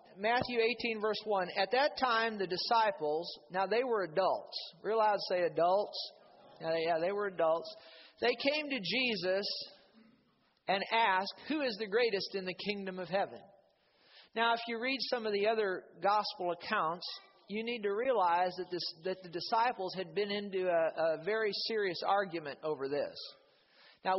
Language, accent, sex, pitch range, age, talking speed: English, American, male, 180-225 Hz, 50-69, 165 wpm